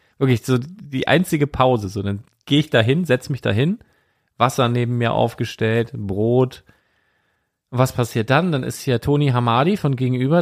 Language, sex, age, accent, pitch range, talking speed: German, male, 40-59, German, 115-150 Hz, 175 wpm